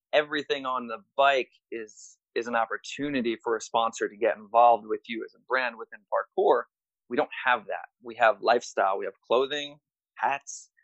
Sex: male